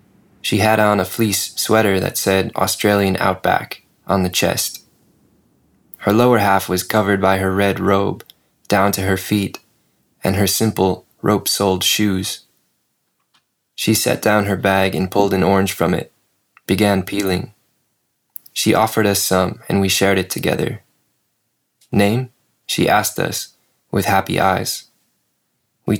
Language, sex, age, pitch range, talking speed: English, male, 20-39, 95-110 Hz, 140 wpm